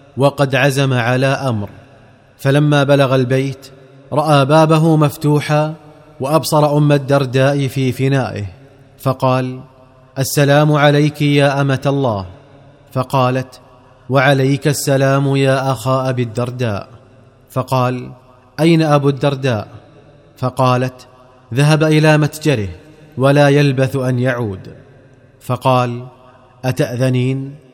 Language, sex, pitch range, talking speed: Arabic, male, 130-145 Hz, 90 wpm